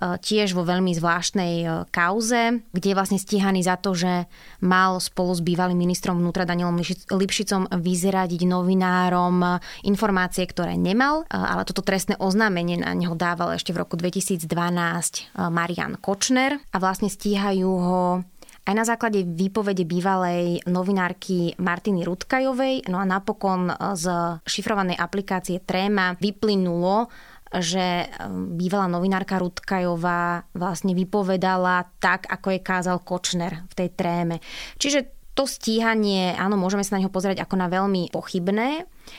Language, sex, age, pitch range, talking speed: Slovak, female, 20-39, 175-200 Hz, 130 wpm